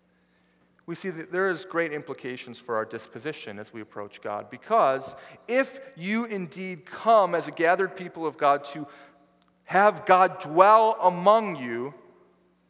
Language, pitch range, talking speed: English, 120-180 Hz, 145 wpm